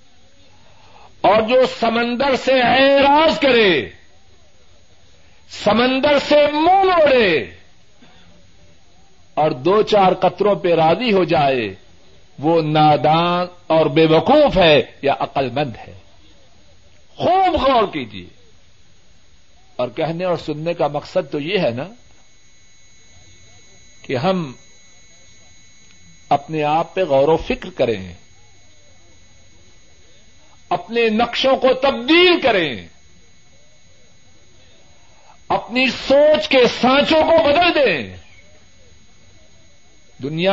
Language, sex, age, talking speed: Urdu, male, 60-79, 95 wpm